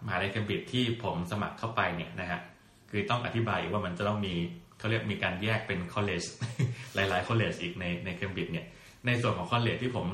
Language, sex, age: Thai, male, 20-39